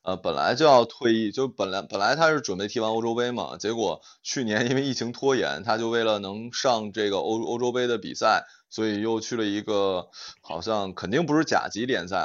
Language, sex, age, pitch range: Chinese, male, 20-39, 100-125 Hz